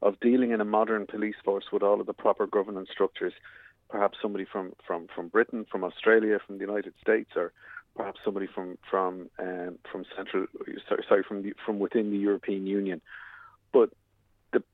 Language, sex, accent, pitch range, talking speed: English, male, Irish, 95-110 Hz, 185 wpm